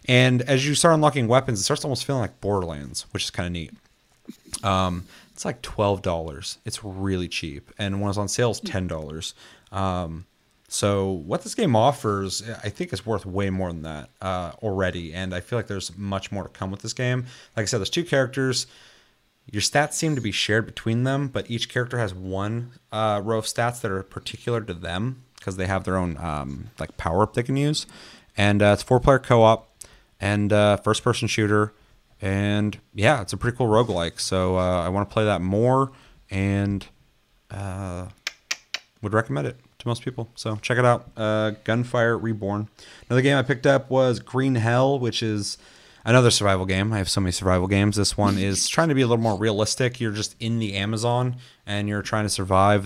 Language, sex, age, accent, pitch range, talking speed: English, male, 30-49, American, 95-120 Hz, 200 wpm